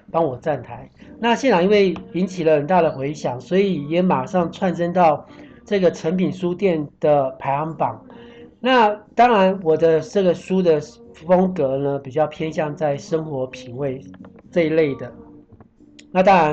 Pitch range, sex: 140-180 Hz, male